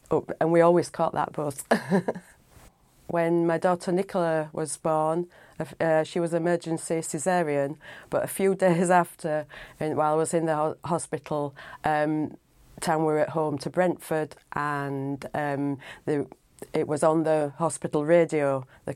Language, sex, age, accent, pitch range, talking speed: English, female, 40-59, British, 150-170 Hz, 140 wpm